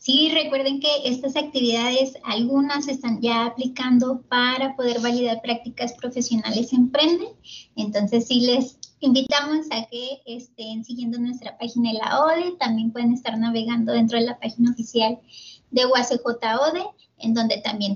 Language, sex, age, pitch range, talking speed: Spanish, male, 20-39, 230-275 Hz, 145 wpm